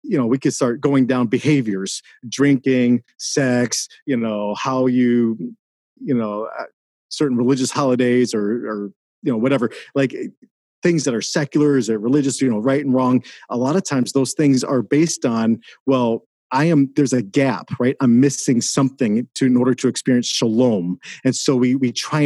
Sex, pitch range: male, 125-160 Hz